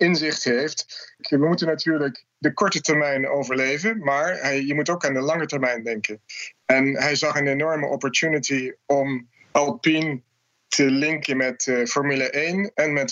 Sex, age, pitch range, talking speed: male, 20-39, 125-150 Hz, 160 wpm